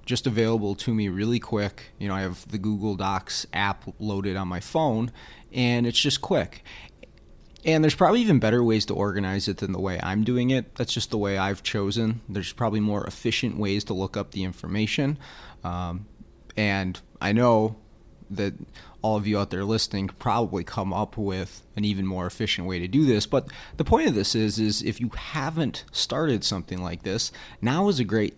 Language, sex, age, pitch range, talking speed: English, male, 30-49, 95-115 Hz, 200 wpm